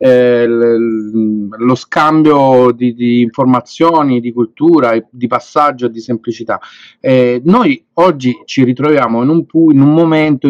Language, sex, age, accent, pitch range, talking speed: Italian, male, 40-59, native, 115-140 Hz, 120 wpm